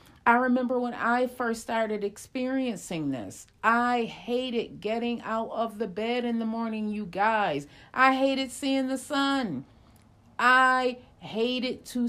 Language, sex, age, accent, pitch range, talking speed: English, female, 40-59, American, 155-240 Hz, 140 wpm